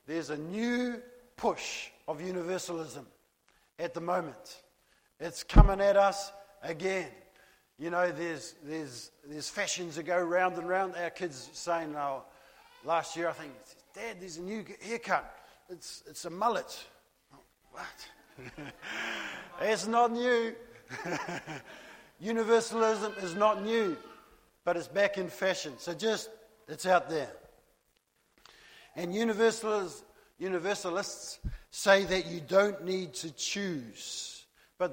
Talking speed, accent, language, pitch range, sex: 125 wpm, Australian, English, 170-200 Hz, male